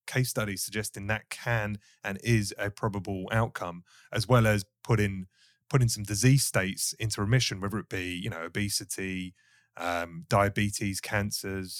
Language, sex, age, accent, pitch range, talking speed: English, male, 30-49, British, 100-120 Hz, 145 wpm